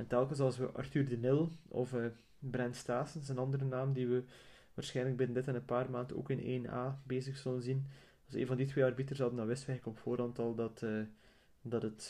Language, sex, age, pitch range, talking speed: Dutch, male, 20-39, 115-135 Hz, 235 wpm